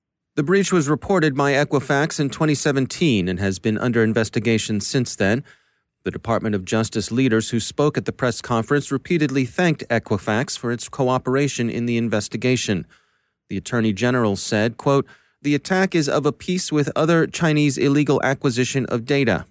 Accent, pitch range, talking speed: American, 110-140 Hz, 165 wpm